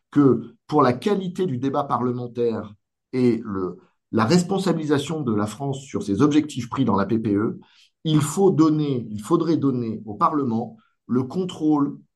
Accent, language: French, French